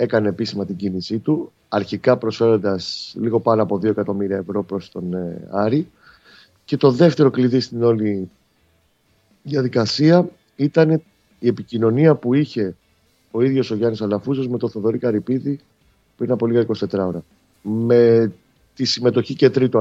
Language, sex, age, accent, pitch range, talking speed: Greek, male, 30-49, native, 100-120 Hz, 140 wpm